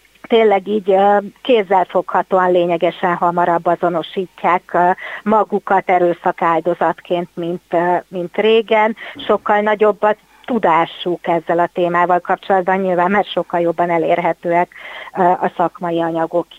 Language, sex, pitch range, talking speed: Hungarian, female, 180-215 Hz, 100 wpm